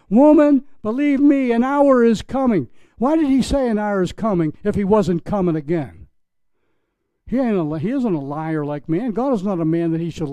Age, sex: 60-79, male